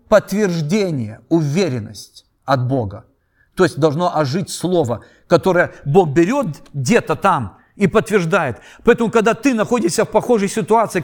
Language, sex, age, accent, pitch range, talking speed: Russian, male, 50-69, native, 180-255 Hz, 125 wpm